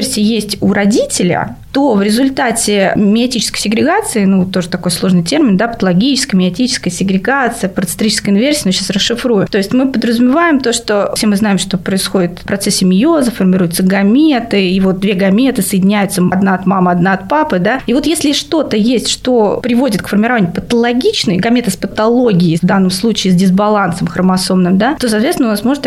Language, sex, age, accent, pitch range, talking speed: Russian, female, 20-39, native, 190-245 Hz, 175 wpm